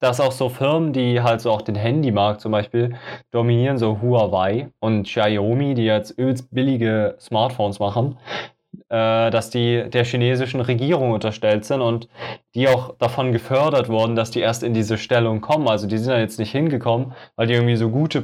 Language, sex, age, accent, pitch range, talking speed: German, male, 20-39, German, 115-135 Hz, 180 wpm